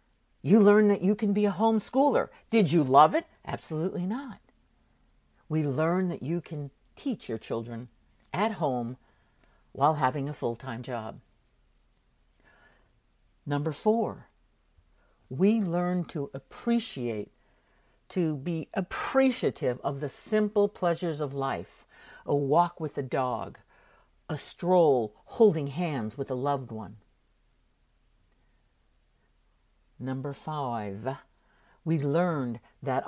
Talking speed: 110 wpm